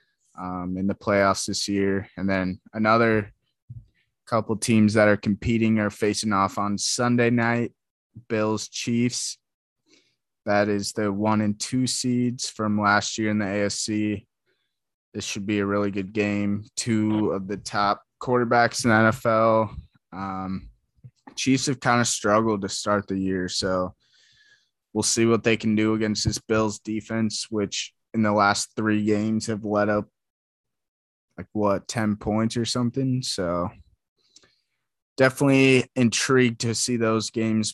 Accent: American